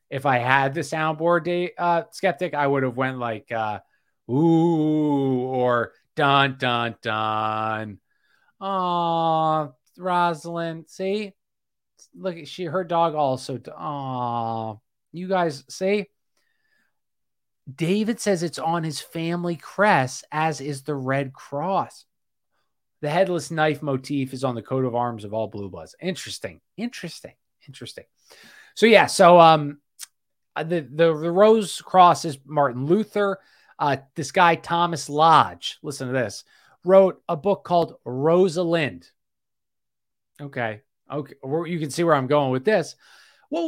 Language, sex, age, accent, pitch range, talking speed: English, male, 30-49, American, 135-185 Hz, 135 wpm